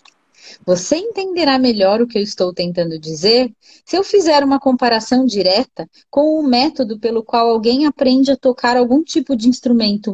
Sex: female